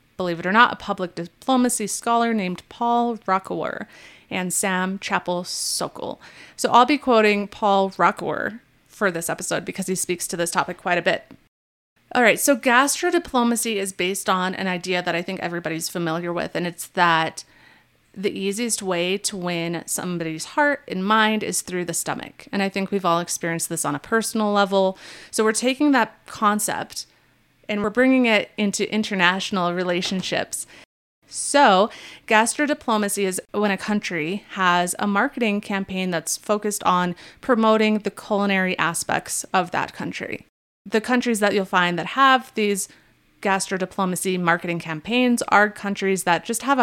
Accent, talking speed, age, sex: American, 160 wpm, 30-49, female